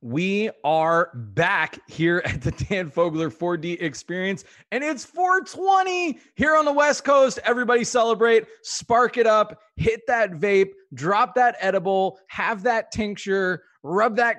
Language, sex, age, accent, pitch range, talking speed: English, male, 20-39, American, 140-210 Hz, 140 wpm